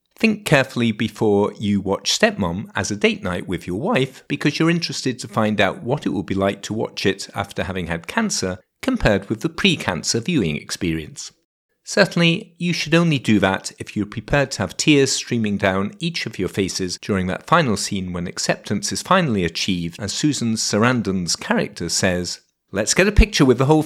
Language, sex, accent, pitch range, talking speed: English, male, British, 100-150 Hz, 190 wpm